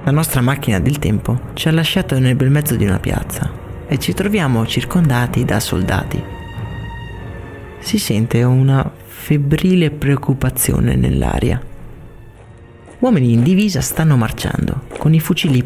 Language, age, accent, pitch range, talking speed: Italian, 30-49, native, 115-150 Hz, 130 wpm